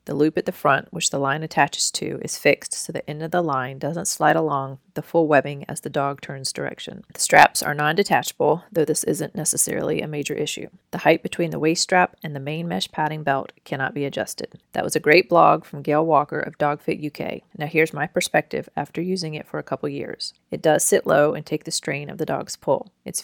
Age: 30-49